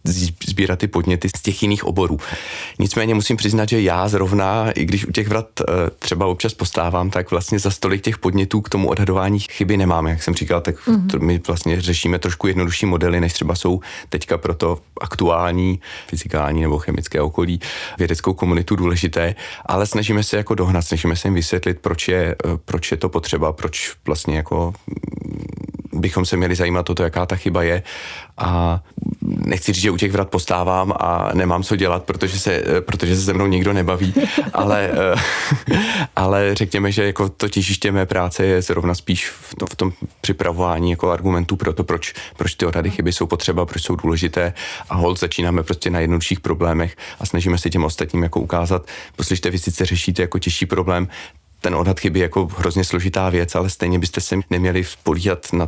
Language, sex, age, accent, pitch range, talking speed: Czech, male, 30-49, native, 85-95 Hz, 185 wpm